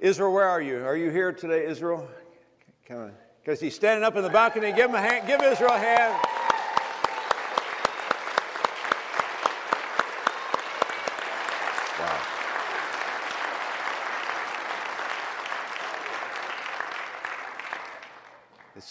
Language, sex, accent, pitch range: English, male, American, 140-195 Hz